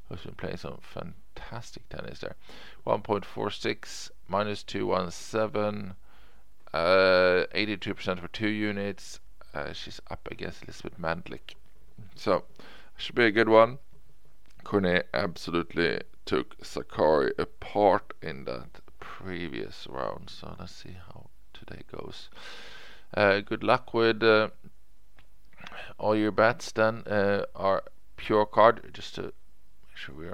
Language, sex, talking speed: English, male, 115 wpm